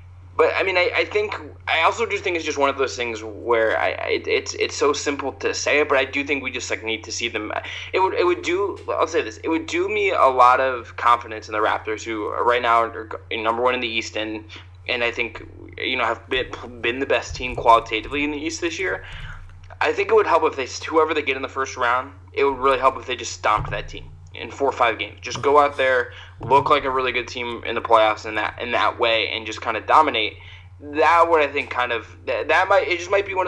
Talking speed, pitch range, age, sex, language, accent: 270 wpm, 110-145 Hz, 20-39, male, English, American